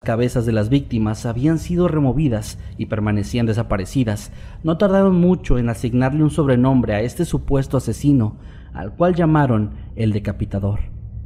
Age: 40-59